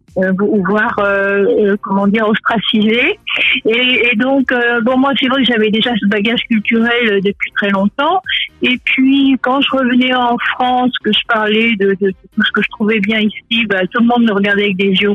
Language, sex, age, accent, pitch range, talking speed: French, female, 50-69, French, 215-270 Hz, 210 wpm